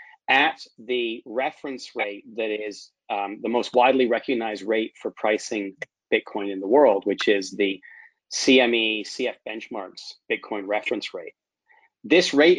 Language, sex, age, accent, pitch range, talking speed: English, male, 30-49, American, 110-155 Hz, 140 wpm